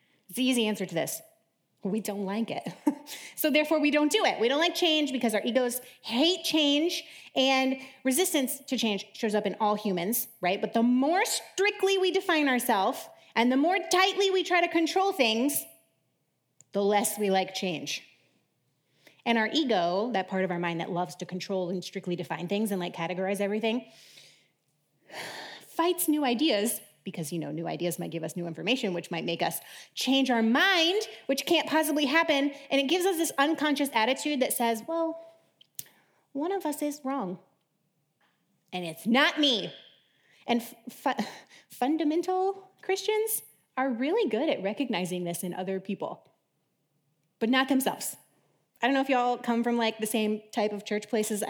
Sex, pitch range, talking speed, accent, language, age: female, 200-300 Hz, 175 wpm, American, English, 30-49